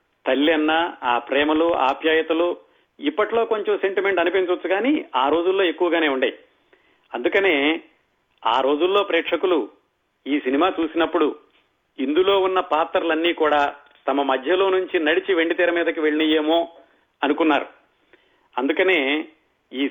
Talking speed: 105 wpm